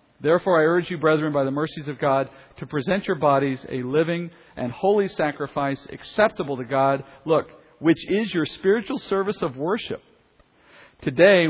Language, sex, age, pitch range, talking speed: English, male, 50-69, 135-170 Hz, 160 wpm